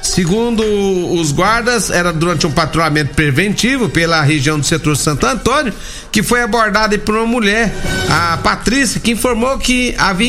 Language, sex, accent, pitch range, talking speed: Portuguese, male, Brazilian, 170-225 Hz, 150 wpm